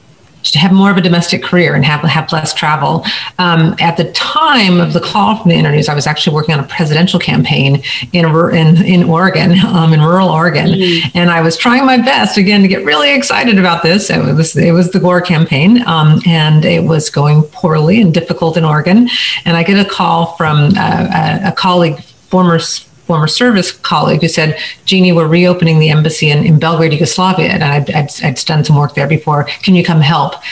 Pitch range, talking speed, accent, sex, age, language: 155-185 Hz, 210 wpm, American, female, 40-59, English